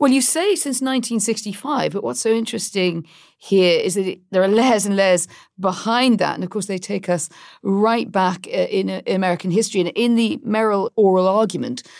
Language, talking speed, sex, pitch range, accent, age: English, 190 wpm, female, 180-230 Hz, British, 40-59